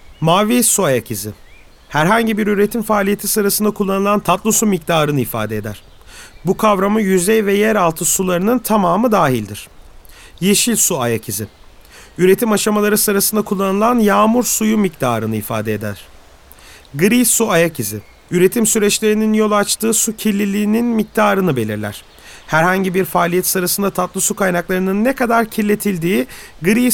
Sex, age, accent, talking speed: male, 40-59, native, 135 wpm